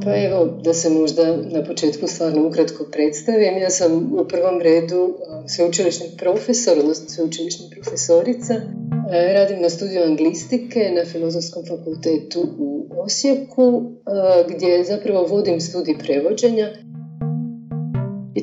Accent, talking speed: native, 115 wpm